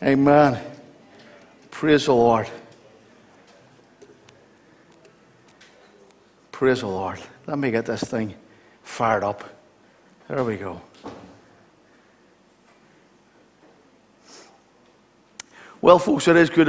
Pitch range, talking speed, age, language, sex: 115-160 Hz, 80 wpm, 50-69, English, male